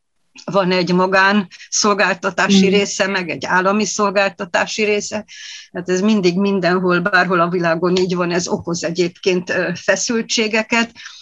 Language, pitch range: Hungarian, 180-205 Hz